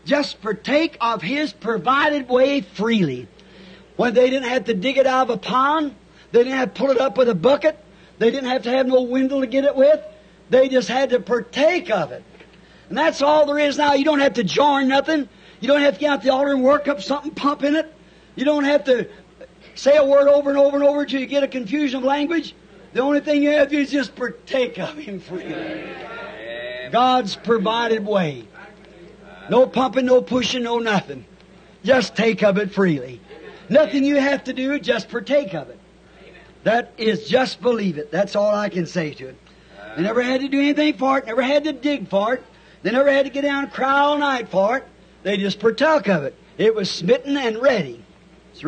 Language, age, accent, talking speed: English, 60-79, American, 220 wpm